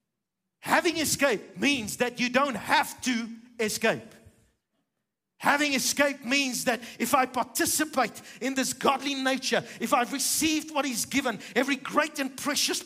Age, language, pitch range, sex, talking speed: 50-69, English, 230-275 Hz, male, 140 wpm